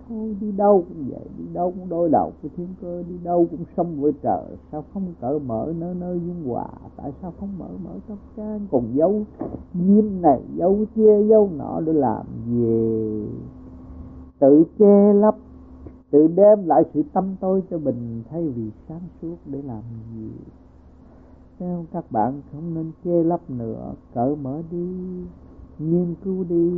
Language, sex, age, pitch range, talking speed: Vietnamese, male, 60-79, 120-190 Hz, 175 wpm